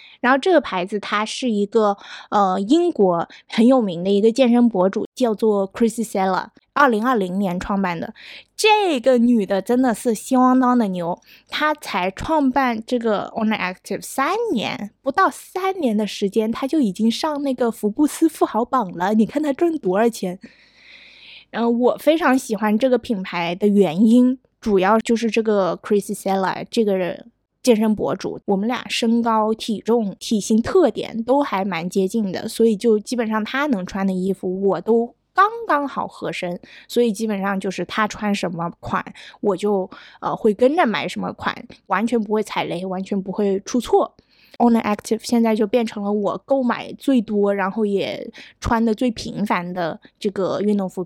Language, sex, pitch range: Chinese, female, 200-250 Hz